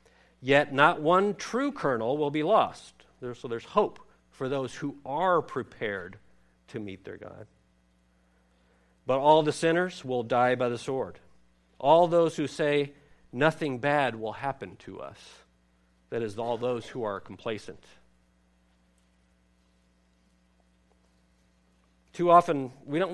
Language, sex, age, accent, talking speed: English, male, 50-69, American, 130 wpm